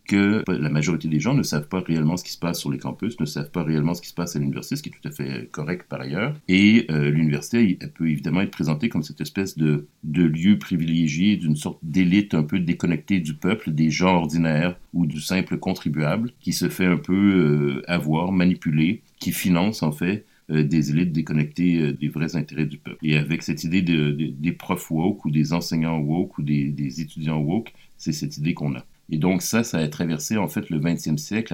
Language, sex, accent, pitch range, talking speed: French, male, French, 75-90 Hz, 230 wpm